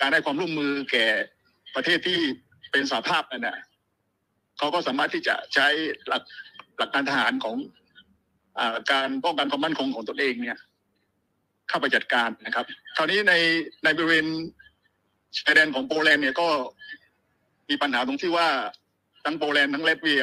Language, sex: Thai, male